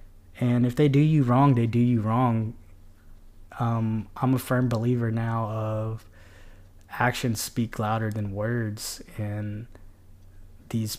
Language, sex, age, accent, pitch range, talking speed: English, male, 20-39, American, 100-120 Hz, 130 wpm